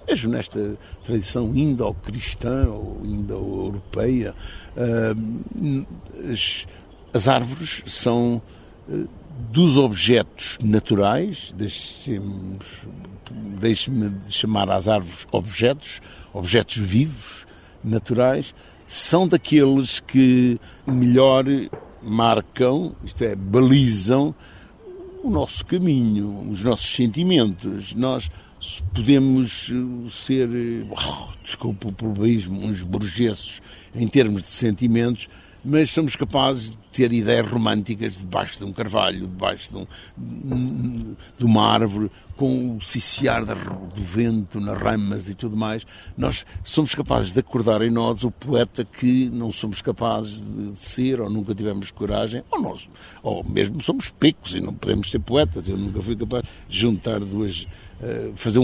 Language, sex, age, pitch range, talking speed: Portuguese, male, 60-79, 100-125 Hz, 115 wpm